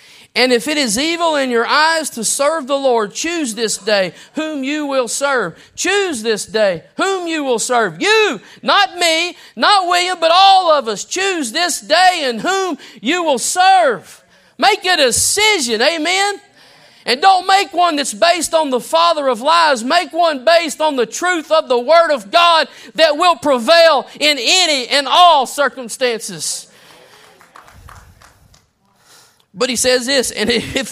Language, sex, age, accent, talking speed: English, male, 40-59, American, 160 wpm